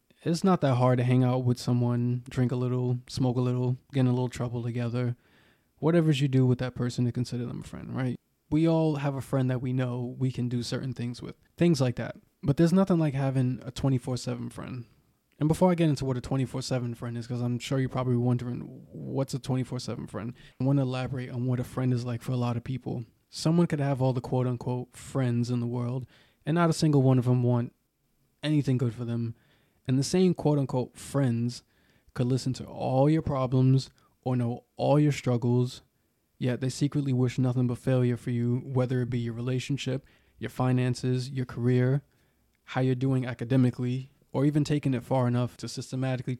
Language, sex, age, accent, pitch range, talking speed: English, male, 20-39, American, 125-135 Hz, 210 wpm